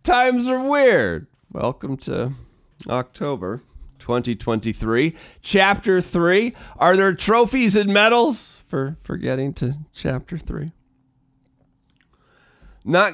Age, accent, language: 30-49, American, English